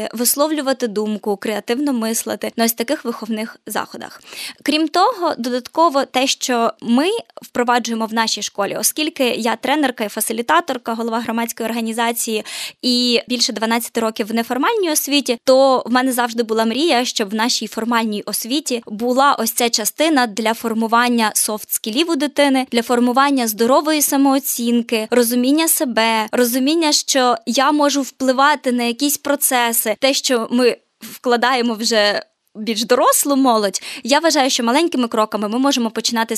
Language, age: Ukrainian, 20-39